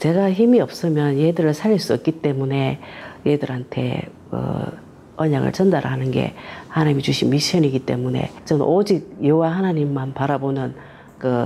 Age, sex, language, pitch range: 40-59, female, Korean, 135-170 Hz